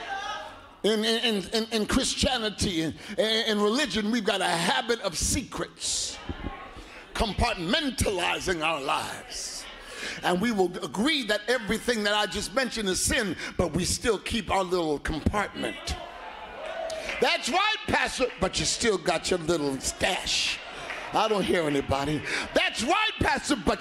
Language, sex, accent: English, male, American